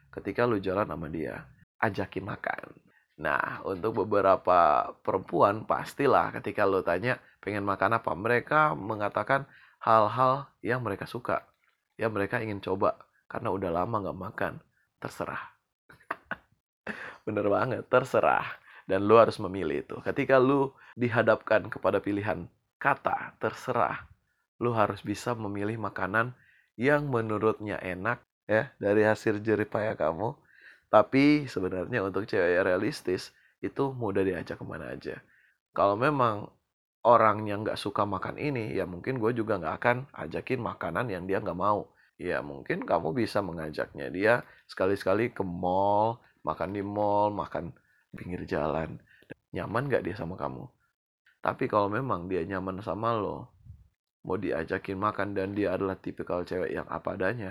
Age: 20-39